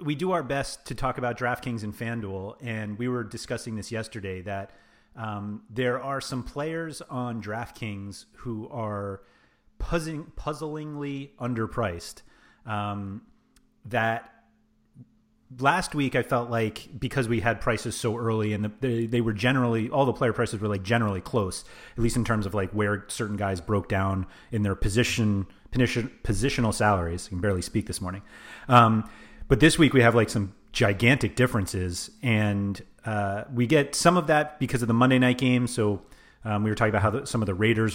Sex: male